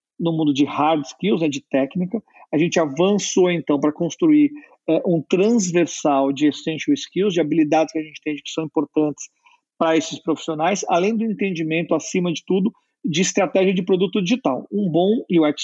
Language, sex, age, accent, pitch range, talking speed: Portuguese, male, 50-69, Brazilian, 155-200 Hz, 175 wpm